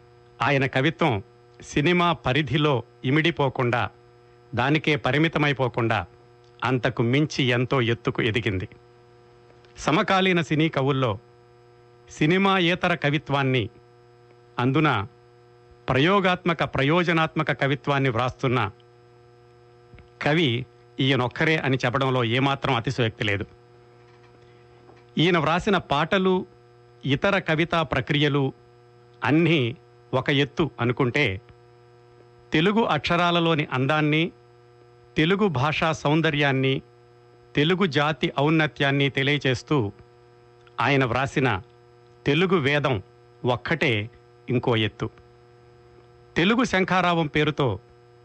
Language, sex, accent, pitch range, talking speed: Telugu, male, native, 120-155 Hz, 75 wpm